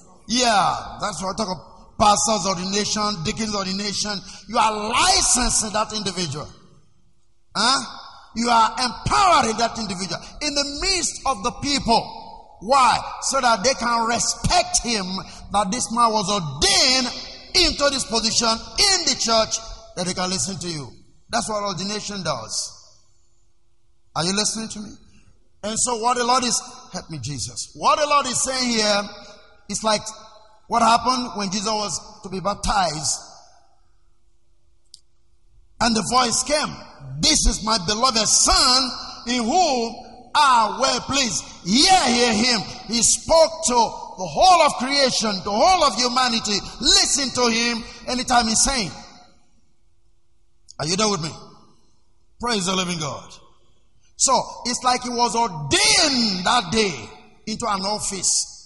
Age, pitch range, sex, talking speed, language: 50-69, 190-250 Hz, male, 140 wpm, English